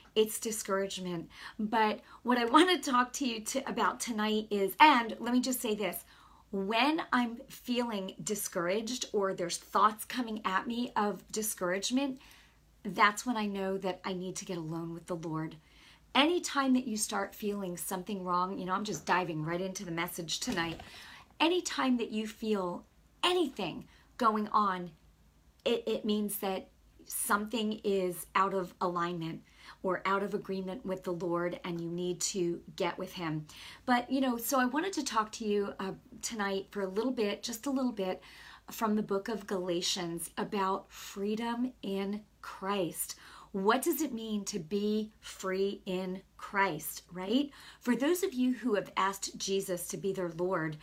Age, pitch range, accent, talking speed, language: 40-59, 185-235 Hz, American, 170 wpm, English